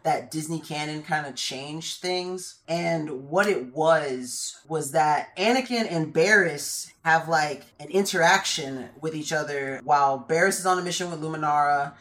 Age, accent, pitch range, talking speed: 20-39, American, 155-200 Hz, 155 wpm